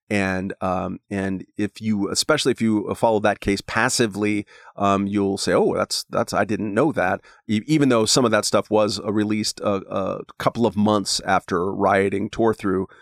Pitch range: 100-120 Hz